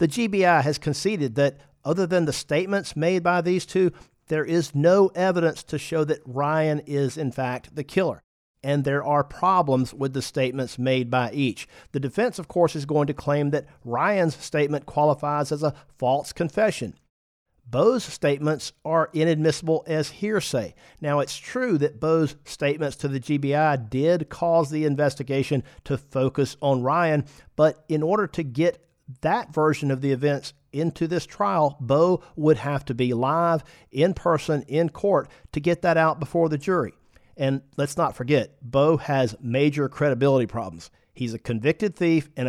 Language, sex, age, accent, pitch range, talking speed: English, male, 50-69, American, 140-165 Hz, 170 wpm